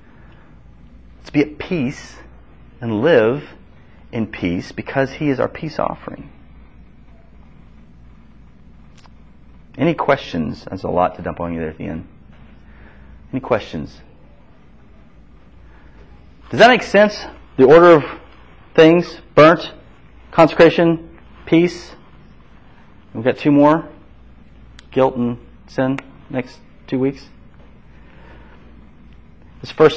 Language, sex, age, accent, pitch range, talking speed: English, male, 30-49, American, 80-130 Hz, 105 wpm